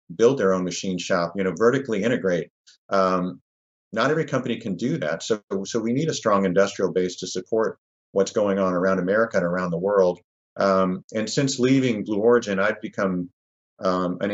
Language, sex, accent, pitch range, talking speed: English, male, American, 90-100 Hz, 190 wpm